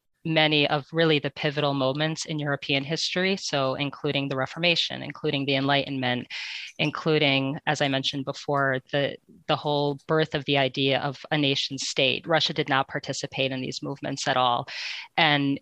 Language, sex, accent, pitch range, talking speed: English, female, American, 135-155 Hz, 160 wpm